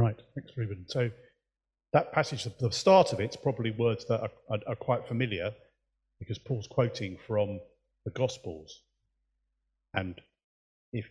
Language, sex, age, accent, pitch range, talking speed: English, male, 30-49, British, 95-120 Hz, 140 wpm